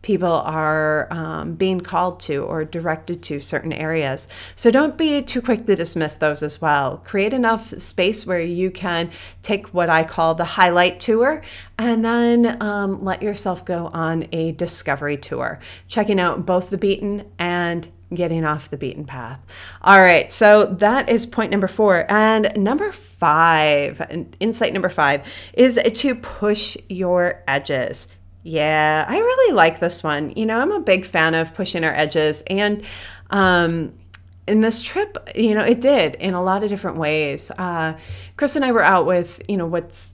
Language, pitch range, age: English, 155-200 Hz, 30-49